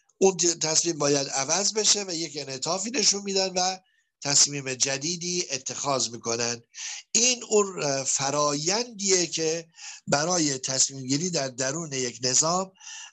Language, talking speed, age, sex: Indonesian, 115 wpm, 50-69, male